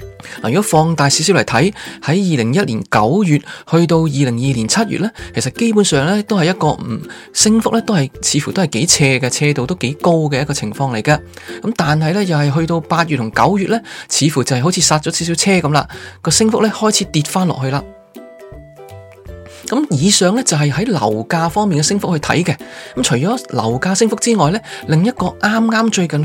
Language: Chinese